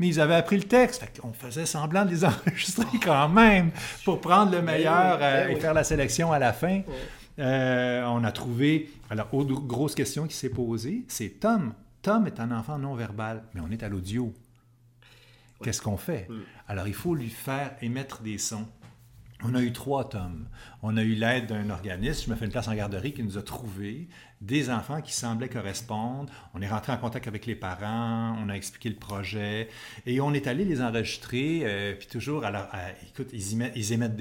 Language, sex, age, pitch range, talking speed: French, male, 50-69, 110-140 Hz, 205 wpm